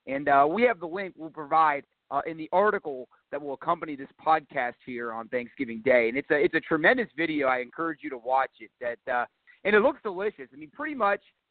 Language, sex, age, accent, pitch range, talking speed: English, male, 30-49, American, 145-190 Hz, 230 wpm